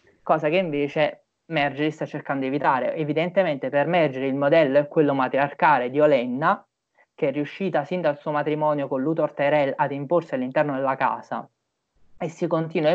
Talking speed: 170 wpm